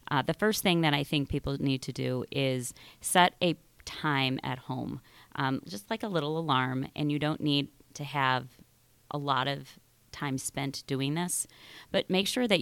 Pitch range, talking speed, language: 135-155 Hz, 190 wpm, English